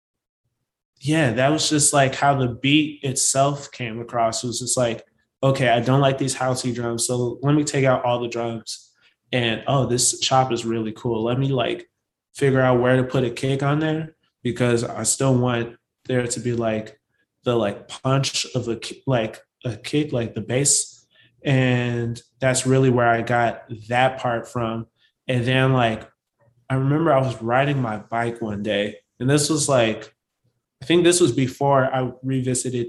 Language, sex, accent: English, male, American